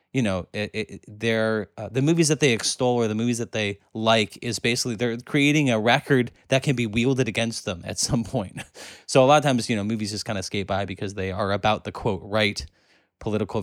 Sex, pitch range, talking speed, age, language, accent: male, 95-125 Hz, 235 wpm, 20-39, English, American